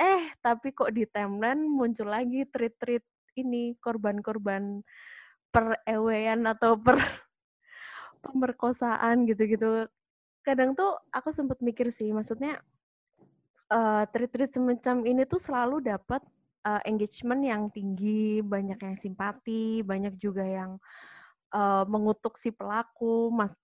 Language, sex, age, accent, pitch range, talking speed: Indonesian, female, 20-39, native, 205-250 Hz, 115 wpm